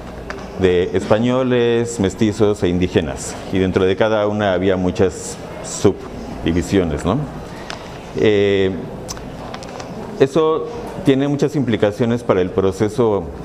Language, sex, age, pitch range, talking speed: Spanish, male, 50-69, 95-120 Hz, 100 wpm